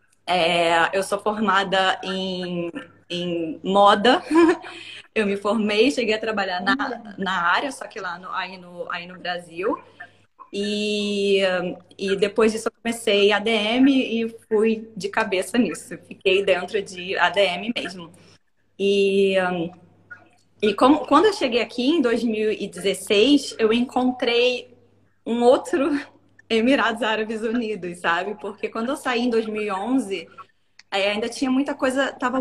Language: Portuguese